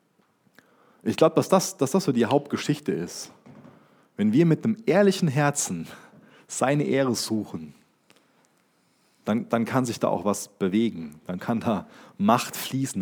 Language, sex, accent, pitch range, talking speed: German, male, German, 115-190 Hz, 145 wpm